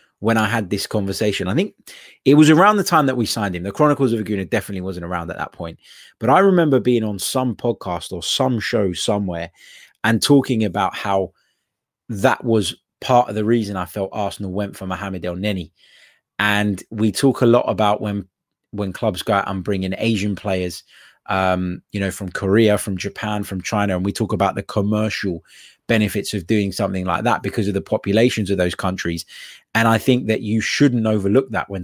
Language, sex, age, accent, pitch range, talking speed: English, male, 20-39, British, 95-115 Hz, 200 wpm